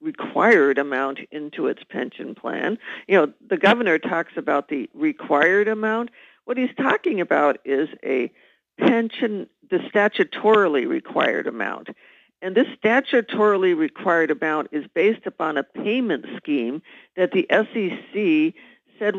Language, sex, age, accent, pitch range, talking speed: English, female, 50-69, American, 175-250 Hz, 130 wpm